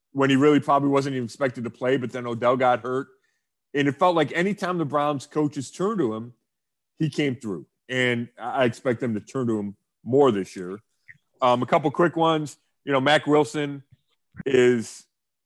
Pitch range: 120-155 Hz